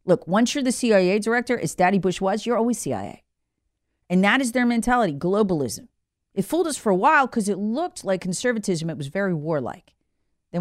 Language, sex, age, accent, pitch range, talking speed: English, female, 40-59, American, 165-220 Hz, 200 wpm